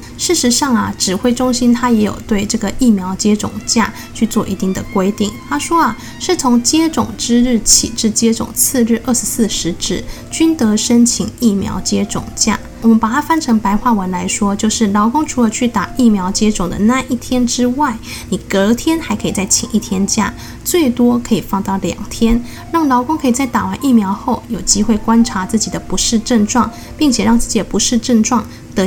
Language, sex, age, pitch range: Chinese, female, 10-29, 205-250 Hz